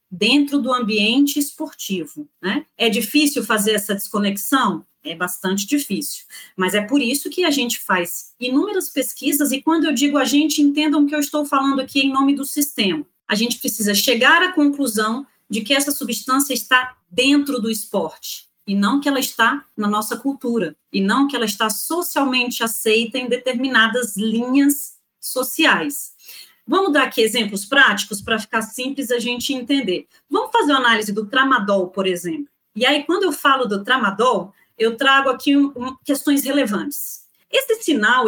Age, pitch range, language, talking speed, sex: 30-49, 220-290 Hz, Portuguese, 170 wpm, female